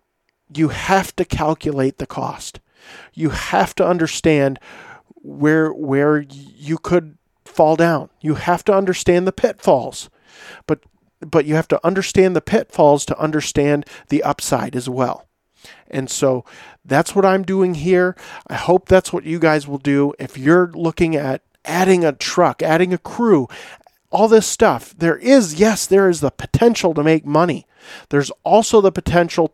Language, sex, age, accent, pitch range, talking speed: English, male, 40-59, American, 140-180 Hz, 160 wpm